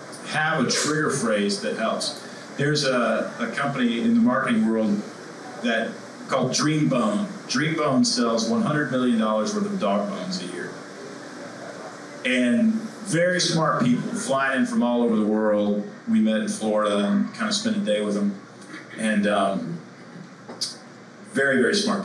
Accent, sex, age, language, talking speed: American, male, 40-59, English, 150 wpm